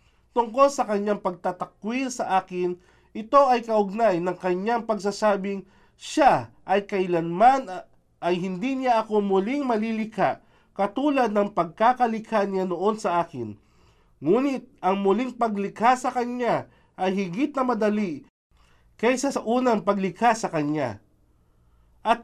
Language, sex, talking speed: Filipino, male, 120 wpm